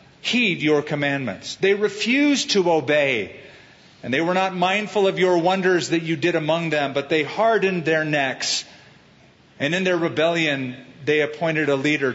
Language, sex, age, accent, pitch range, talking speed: English, male, 50-69, American, 145-185 Hz, 165 wpm